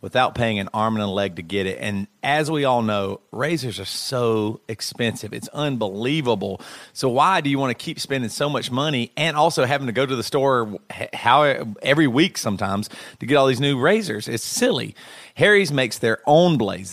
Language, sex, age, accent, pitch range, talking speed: English, male, 40-59, American, 105-145 Hz, 195 wpm